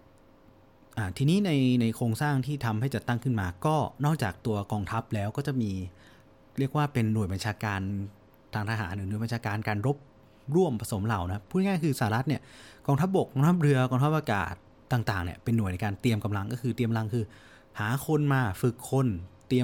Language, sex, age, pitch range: Thai, male, 30-49, 105-130 Hz